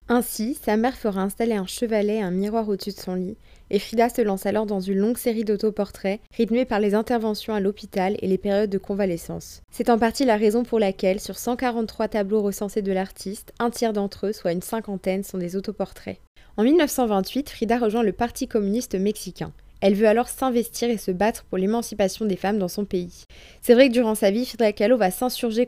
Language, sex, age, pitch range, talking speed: French, female, 20-39, 195-230 Hz, 210 wpm